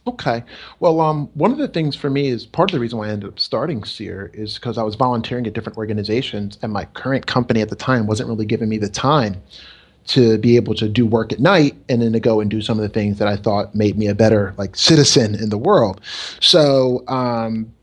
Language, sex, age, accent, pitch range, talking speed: English, male, 30-49, American, 110-140 Hz, 245 wpm